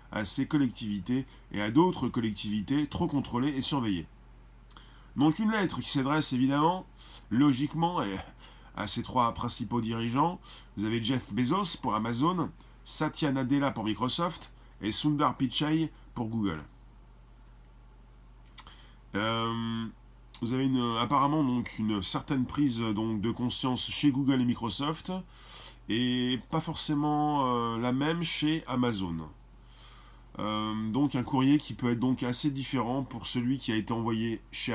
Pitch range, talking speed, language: 110-145 Hz, 135 wpm, French